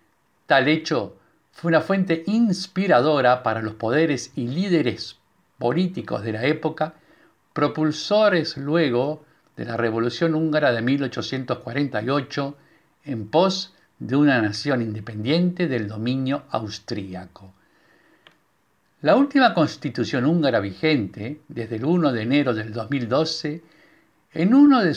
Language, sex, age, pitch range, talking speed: Spanish, male, 60-79, 120-165 Hz, 115 wpm